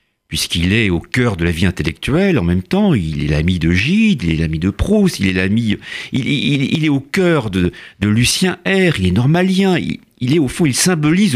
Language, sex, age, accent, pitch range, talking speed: French, male, 50-69, French, 95-150 Hz, 190 wpm